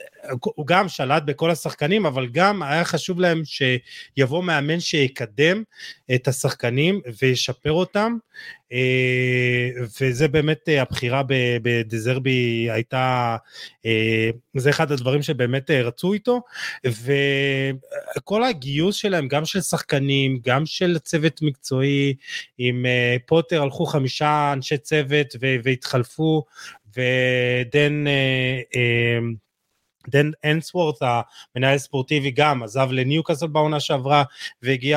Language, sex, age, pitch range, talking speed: Hebrew, male, 30-49, 130-165 Hz, 95 wpm